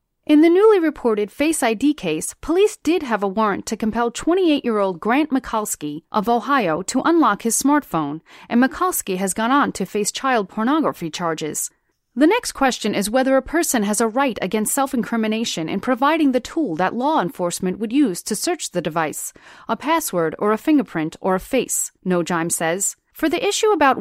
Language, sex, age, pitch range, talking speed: English, female, 30-49, 190-285 Hz, 180 wpm